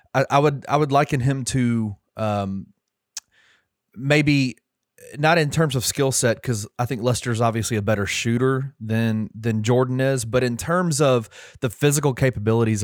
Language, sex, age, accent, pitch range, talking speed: English, male, 30-49, American, 110-135 Hz, 165 wpm